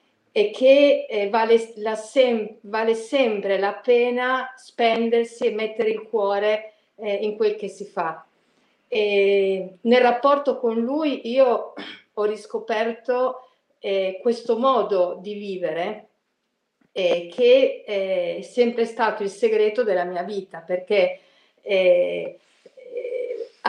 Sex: female